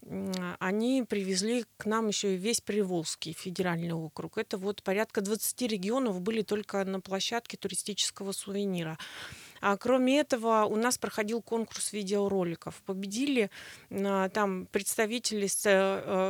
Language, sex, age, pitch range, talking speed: Russian, female, 30-49, 195-230 Hz, 130 wpm